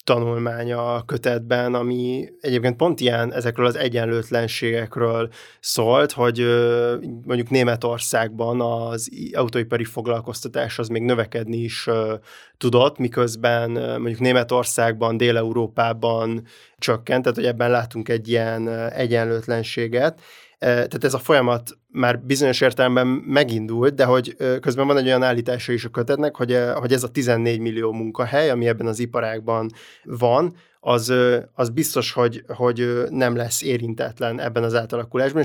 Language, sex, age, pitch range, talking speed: Hungarian, male, 20-39, 115-125 Hz, 125 wpm